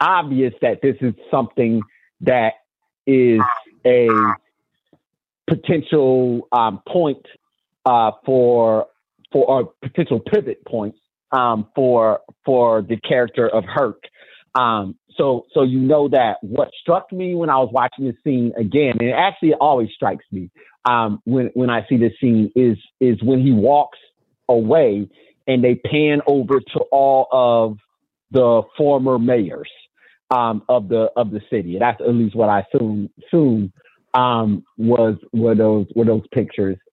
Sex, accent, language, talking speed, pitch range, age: male, American, English, 150 wpm, 110-130 Hz, 40-59